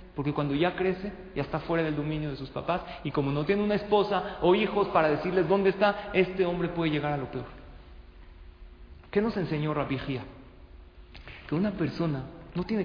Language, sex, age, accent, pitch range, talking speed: Spanish, male, 40-59, Mexican, 145-190 Hz, 185 wpm